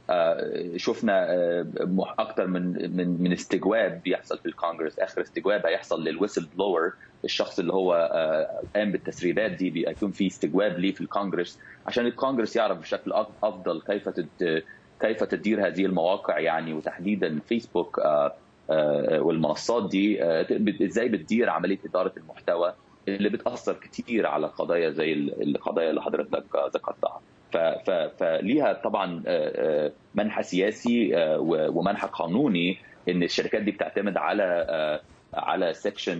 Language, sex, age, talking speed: Arabic, male, 30-49, 115 wpm